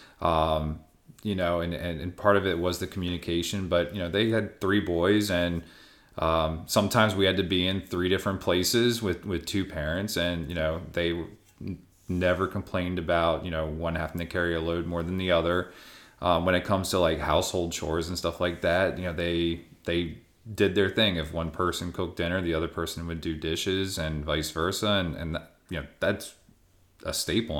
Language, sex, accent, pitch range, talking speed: English, male, American, 80-95 Hz, 205 wpm